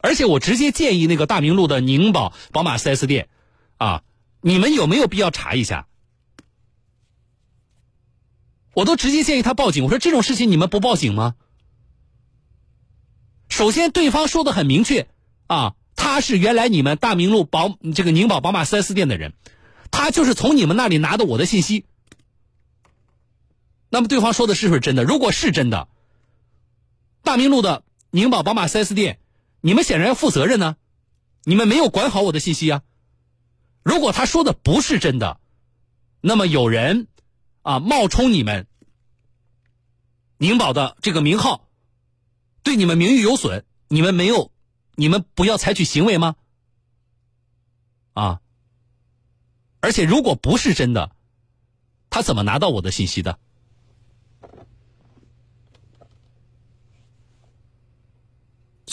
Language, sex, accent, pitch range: Chinese, male, native, 120-200 Hz